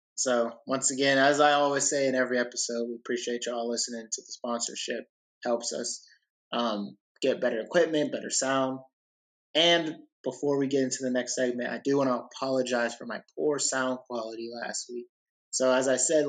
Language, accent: English, American